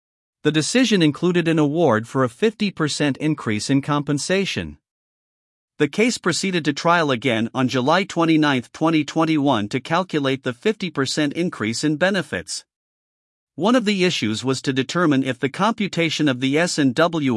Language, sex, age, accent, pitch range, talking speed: English, male, 50-69, American, 130-165 Hz, 140 wpm